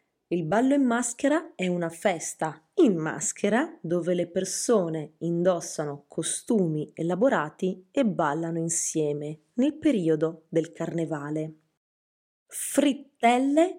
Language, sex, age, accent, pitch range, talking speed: Italian, female, 20-39, native, 160-210 Hz, 100 wpm